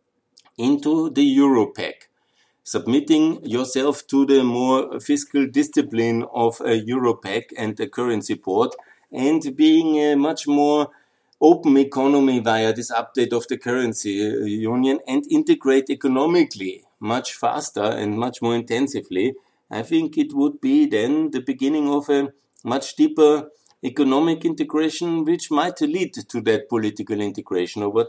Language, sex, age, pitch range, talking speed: German, male, 50-69, 105-150 Hz, 130 wpm